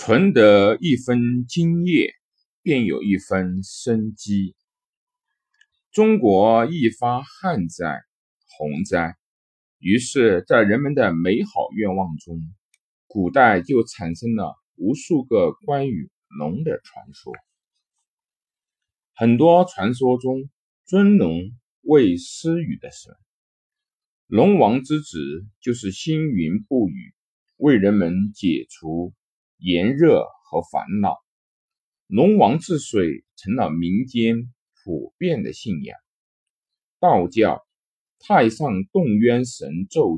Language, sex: Chinese, male